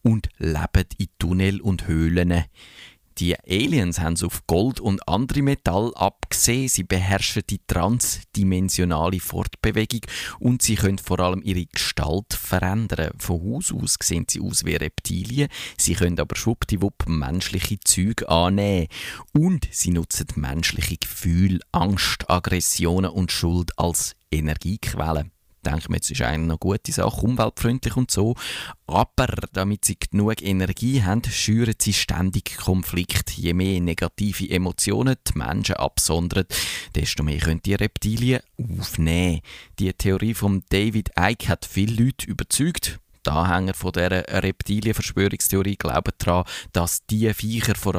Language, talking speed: German, 135 wpm